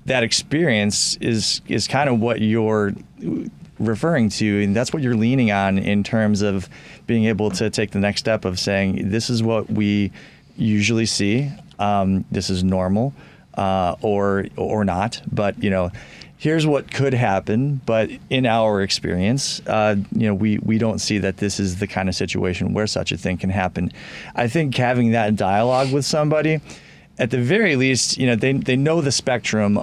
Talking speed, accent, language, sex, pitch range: 185 wpm, American, English, male, 100-120 Hz